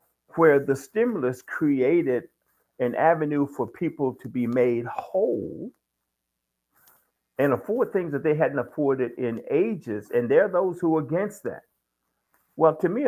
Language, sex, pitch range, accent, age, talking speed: English, male, 115-165 Hz, American, 50-69, 145 wpm